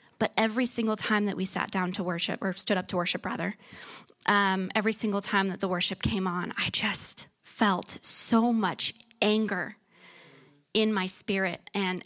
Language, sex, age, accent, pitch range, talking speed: English, female, 20-39, American, 190-225 Hz, 175 wpm